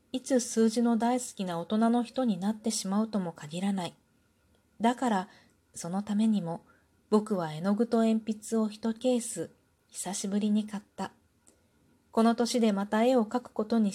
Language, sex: Japanese, female